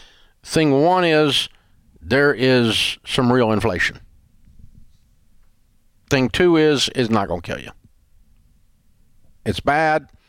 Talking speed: 110 wpm